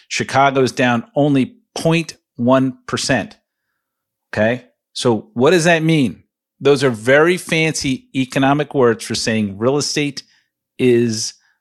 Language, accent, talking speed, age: English, American, 110 wpm, 40-59